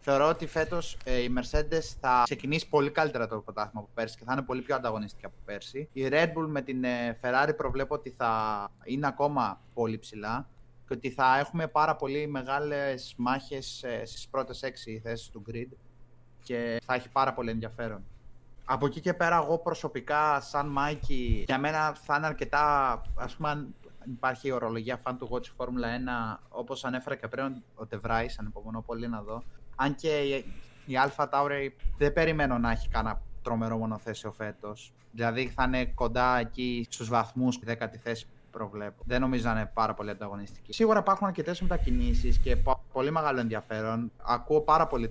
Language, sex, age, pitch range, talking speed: Greek, male, 20-39, 115-140 Hz, 180 wpm